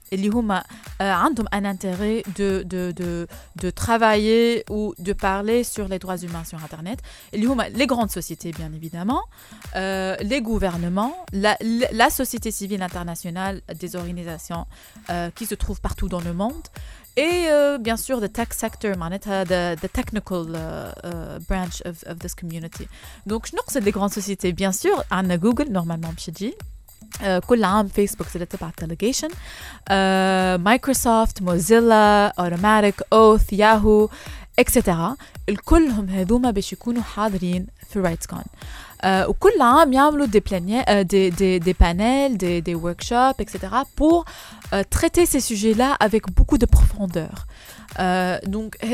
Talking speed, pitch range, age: 135 wpm, 190-250 Hz, 20-39